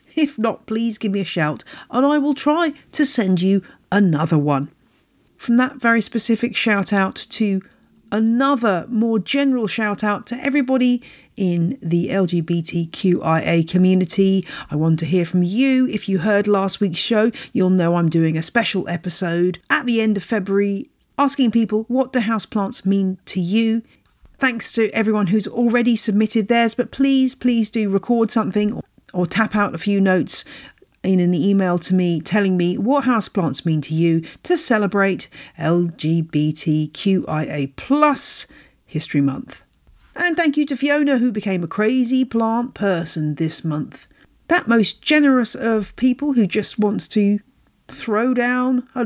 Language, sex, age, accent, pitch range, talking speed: English, female, 40-59, British, 185-250 Hz, 155 wpm